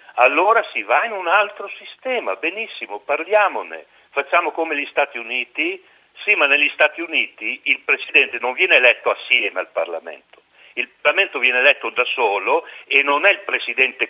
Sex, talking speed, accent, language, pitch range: male, 160 wpm, native, Italian, 145-205 Hz